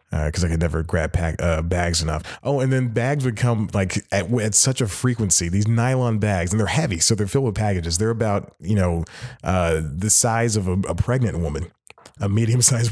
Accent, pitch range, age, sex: American, 90-115 Hz, 30-49, male